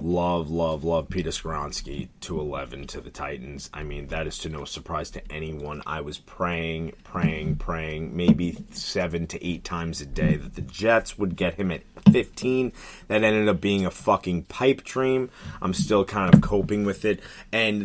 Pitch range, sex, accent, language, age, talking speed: 85-100 Hz, male, American, English, 30-49, 185 wpm